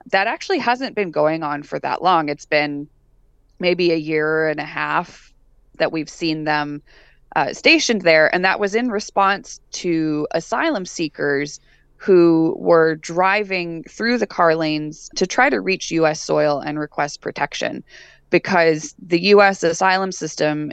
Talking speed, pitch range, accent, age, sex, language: 155 wpm, 145-175 Hz, American, 20-39, female, English